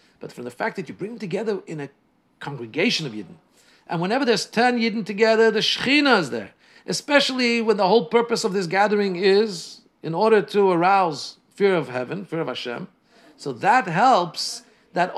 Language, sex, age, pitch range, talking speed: English, male, 50-69, 155-225 Hz, 185 wpm